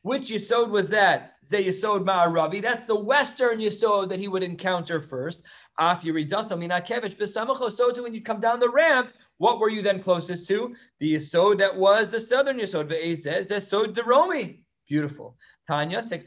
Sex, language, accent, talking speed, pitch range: male, English, American, 160 wpm, 180-245 Hz